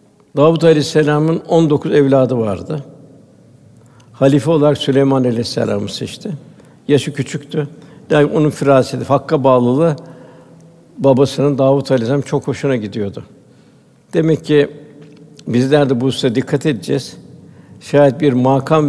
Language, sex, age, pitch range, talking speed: Turkish, male, 60-79, 130-150 Hz, 110 wpm